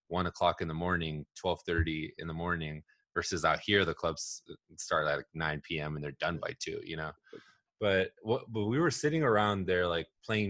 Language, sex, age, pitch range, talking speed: English, male, 20-39, 85-100 Hz, 210 wpm